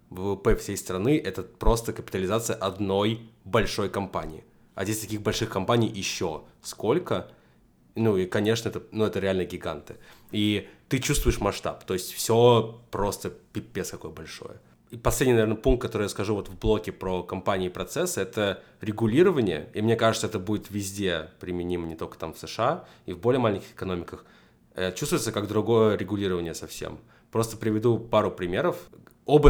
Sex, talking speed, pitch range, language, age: male, 160 wpm, 90-115 Hz, Russian, 20-39